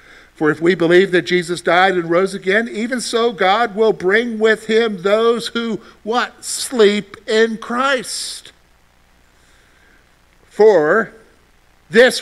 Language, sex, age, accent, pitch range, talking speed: English, male, 60-79, American, 150-220 Hz, 125 wpm